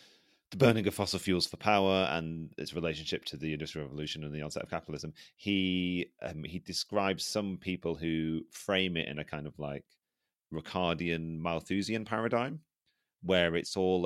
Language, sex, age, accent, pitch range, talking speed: English, male, 30-49, British, 75-95 Hz, 165 wpm